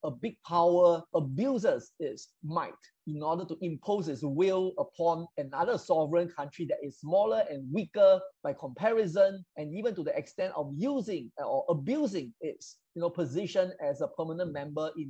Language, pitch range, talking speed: English, 150-195 Hz, 165 wpm